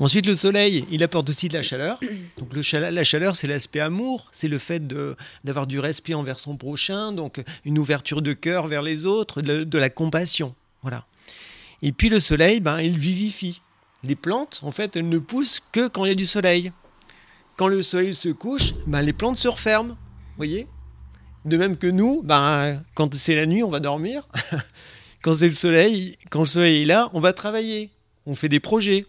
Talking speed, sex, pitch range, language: 210 wpm, male, 150-195 Hz, French